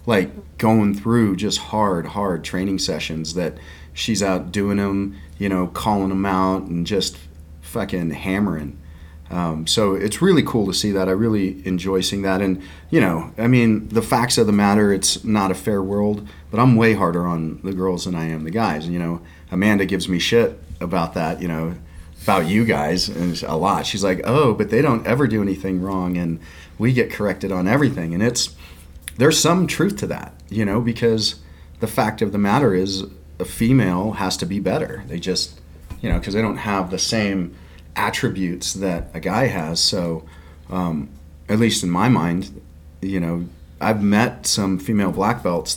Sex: male